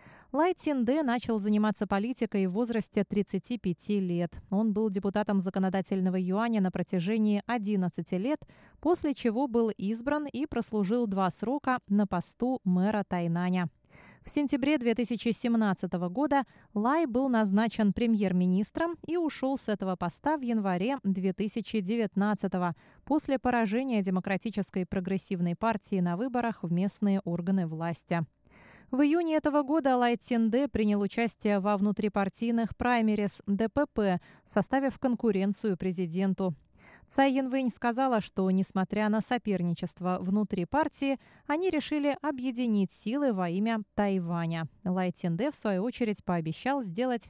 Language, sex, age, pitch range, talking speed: Russian, female, 20-39, 190-250 Hz, 120 wpm